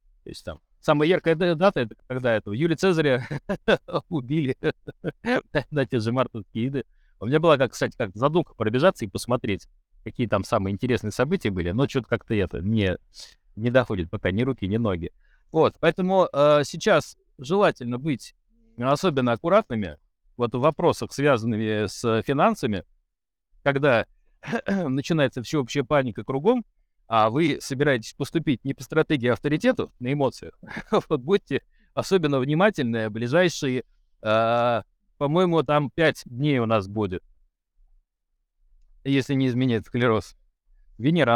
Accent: native